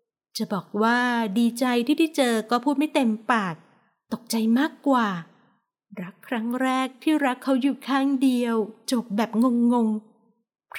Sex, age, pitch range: female, 20-39, 215-260 Hz